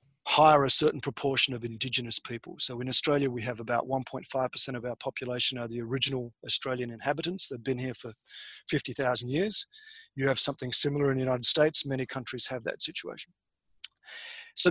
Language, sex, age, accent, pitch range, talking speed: English, male, 40-59, Australian, 130-160 Hz, 175 wpm